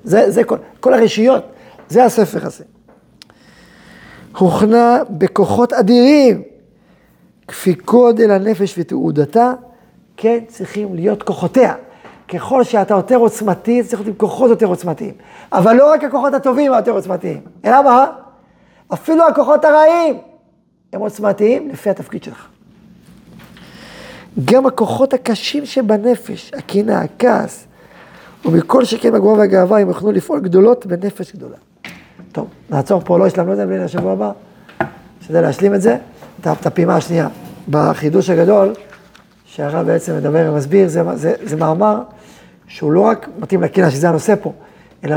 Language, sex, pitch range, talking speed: Hebrew, male, 175-235 Hz, 130 wpm